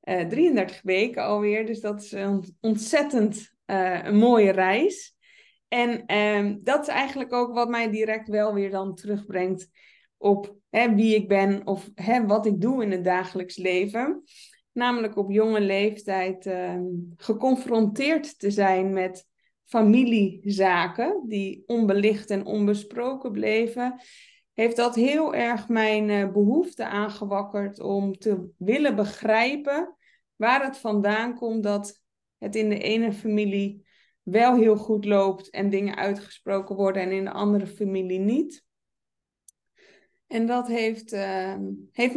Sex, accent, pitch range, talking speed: female, Dutch, 195-235 Hz, 130 wpm